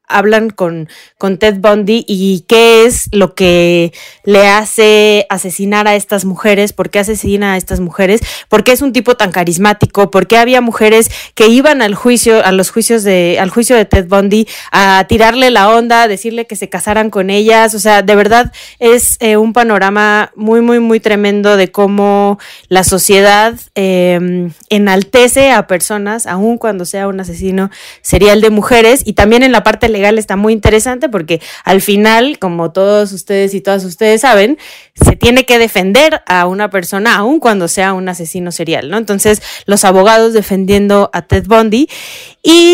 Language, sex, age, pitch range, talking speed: Spanish, female, 20-39, 195-225 Hz, 175 wpm